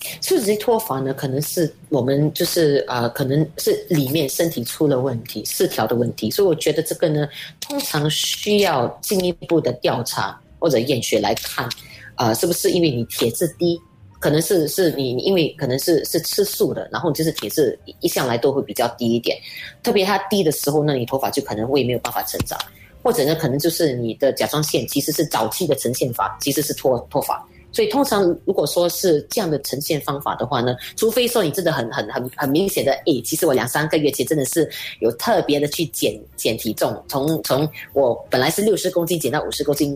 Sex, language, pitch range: female, Chinese, 135-175 Hz